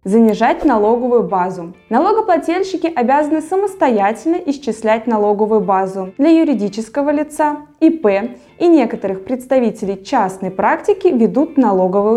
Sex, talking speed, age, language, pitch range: female, 100 wpm, 20-39, Russian, 205-300 Hz